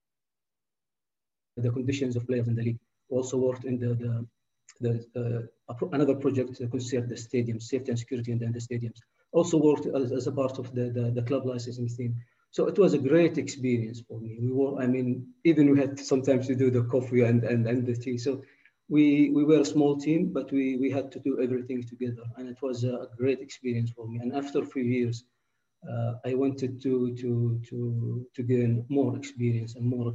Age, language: 40-59, English